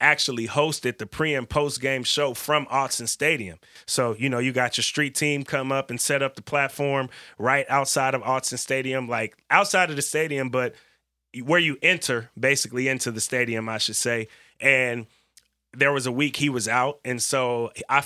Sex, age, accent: male, 30-49, American